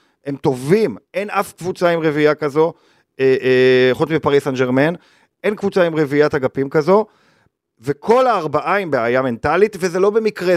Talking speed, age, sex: 160 wpm, 40-59, male